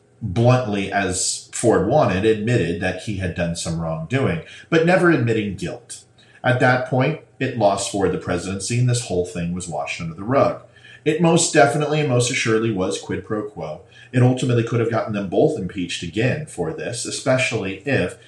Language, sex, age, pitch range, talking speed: English, male, 40-59, 100-130 Hz, 180 wpm